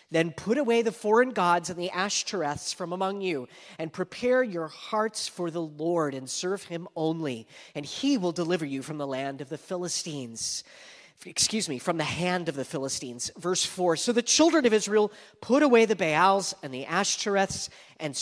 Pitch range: 155-205 Hz